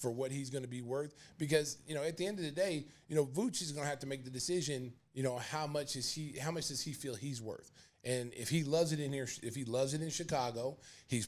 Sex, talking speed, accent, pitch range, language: male, 285 wpm, American, 125-150 Hz, English